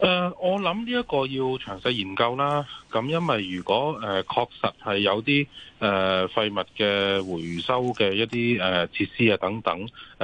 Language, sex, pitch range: Chinese, male, 90-120 Hz